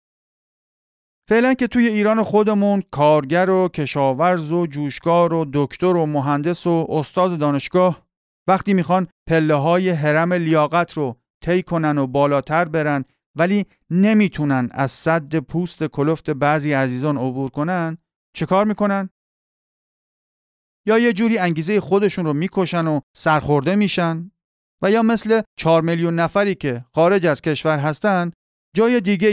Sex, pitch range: male, 145-190 Hz